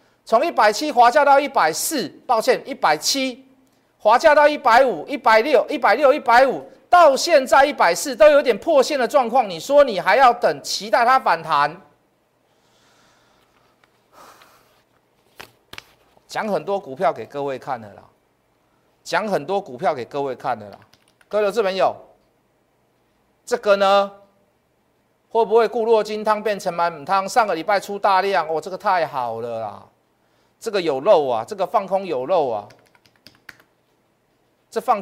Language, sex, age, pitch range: Chinese, male, 50-69, 190-250 Hz